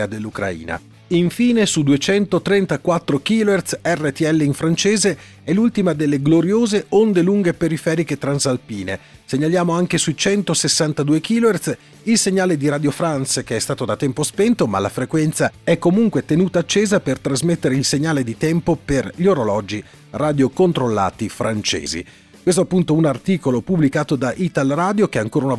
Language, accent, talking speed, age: Italian, native, 145 wpm, 40-59